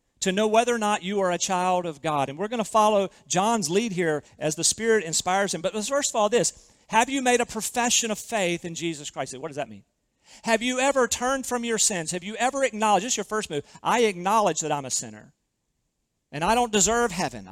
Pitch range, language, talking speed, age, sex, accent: 155-220 Hz, English, 235 wpm, 40-59, male, American